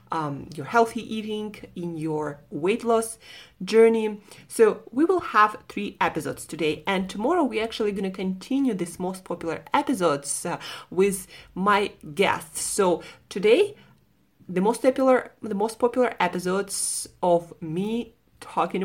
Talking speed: 135 wpm